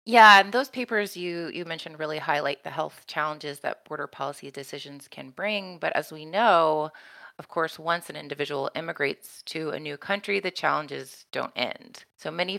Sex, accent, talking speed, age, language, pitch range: female, American, 180 wpm, 30-49, English, 150-200 Hz